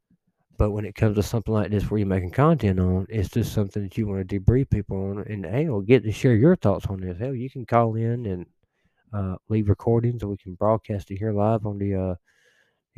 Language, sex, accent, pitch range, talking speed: English, male, American, 95-110 Hz, 240 wpm